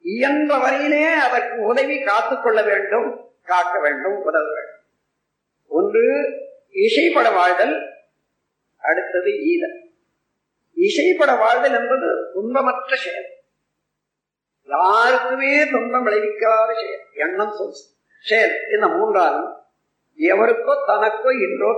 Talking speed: 75 wpm